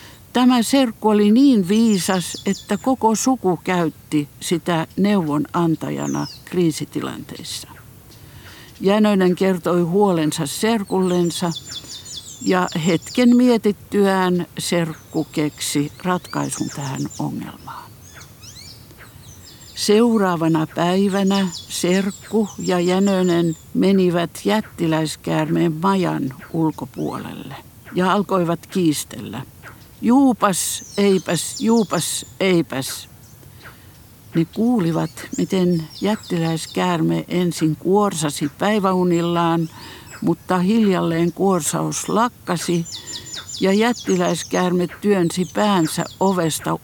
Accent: native